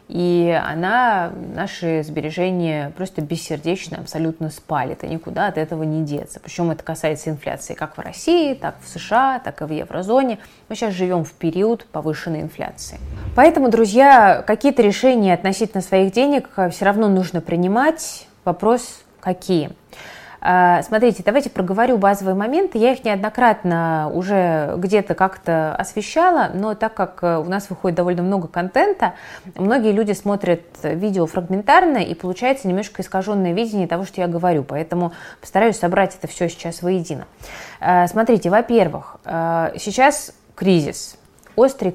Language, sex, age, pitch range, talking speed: Russian, female, 20-39, 165-215 Hz, 135 wpm